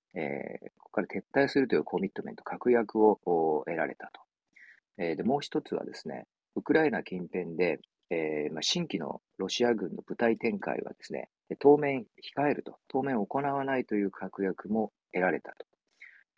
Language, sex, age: Japanese, male, 40-59